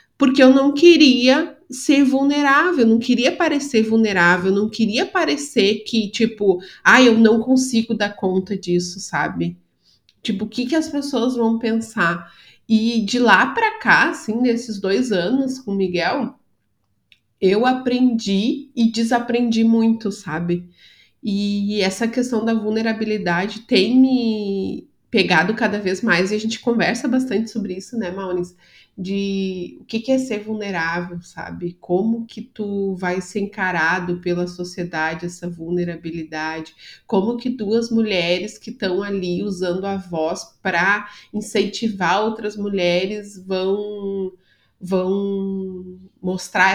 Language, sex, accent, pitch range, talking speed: Portuguese, female, Brazilian, 185-230 Hz, 135 wpm